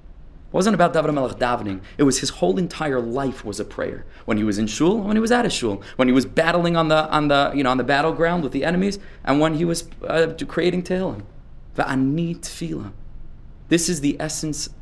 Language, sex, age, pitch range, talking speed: English, male, 20-39, 115-155 Hz, 225 wpm